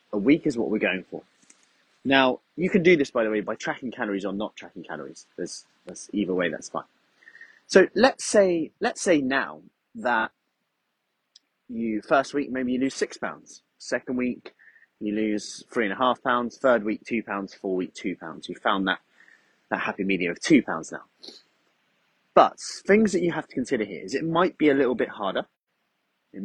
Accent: British